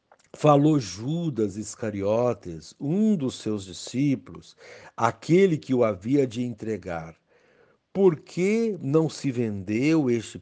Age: 60-79